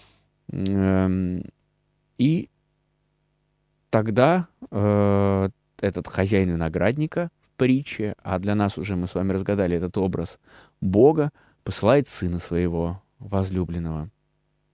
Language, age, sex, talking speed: Russian, 20-39, male, 90 wpm